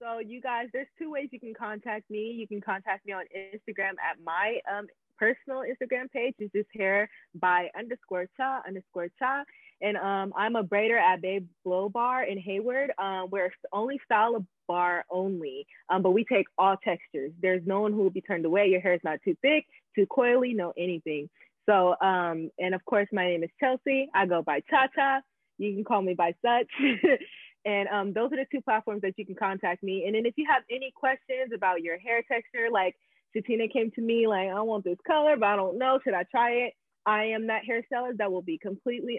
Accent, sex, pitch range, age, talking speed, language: American, female, 185-245 Hz, 20-39, 215 wpm, English